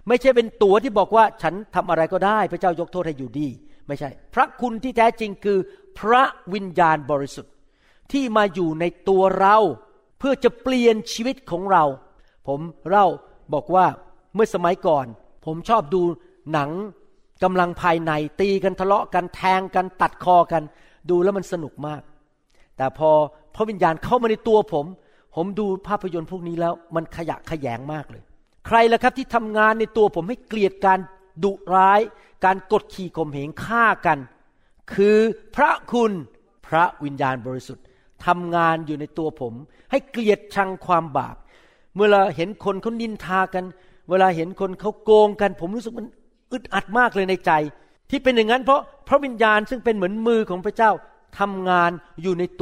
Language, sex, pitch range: Thai, male, 160-220 Hz